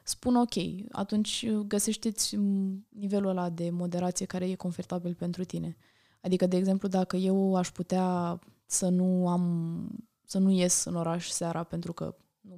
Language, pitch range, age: Romanian, 180-205 Hz, 20-39